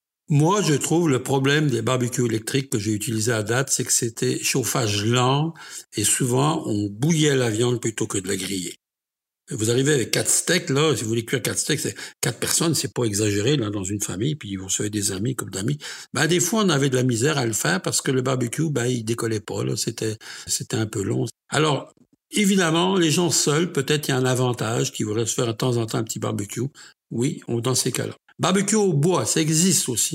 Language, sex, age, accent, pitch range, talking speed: French, male, 60-79, French, 115-150 Hz, 230 wpm